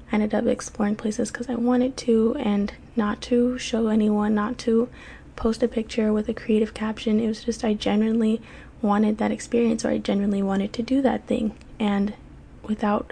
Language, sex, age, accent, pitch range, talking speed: English, female, 10-29, American, 210-230 Hz, 190 wpm